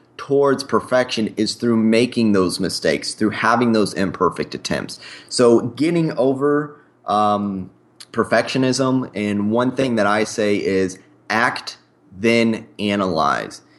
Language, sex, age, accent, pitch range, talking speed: English, male, 20-39, American, 100-120 Hz, 115 wpm